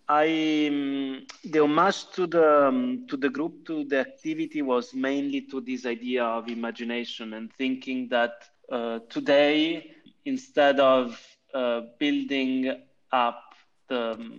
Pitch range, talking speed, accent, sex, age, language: 115-145 Hz, 125 wpm, Italian, male, 30-49, English